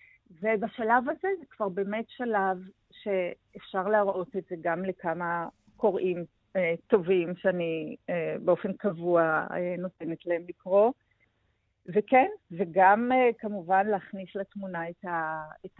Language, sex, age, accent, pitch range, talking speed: Hebrew, female, 40-59, native, 180-215 Hz, 100 wpm